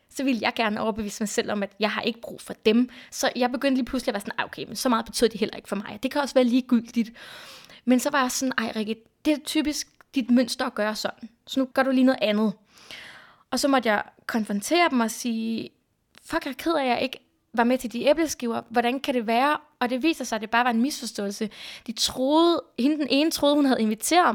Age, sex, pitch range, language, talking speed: 20-39, female, 230-280 Hz, Danish, 250 wpm